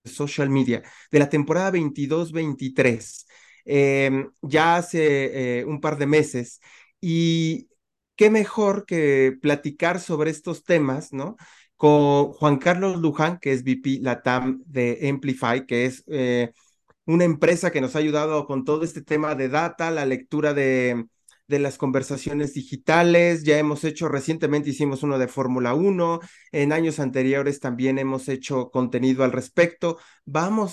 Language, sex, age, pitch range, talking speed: Spanish, male, 30-49, 130-155 Hz, 145 wpm